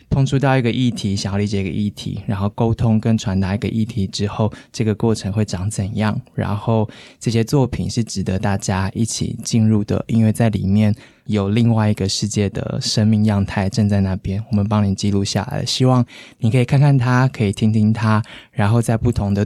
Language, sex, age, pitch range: Chinese, male, 20-39, 100-115 Hz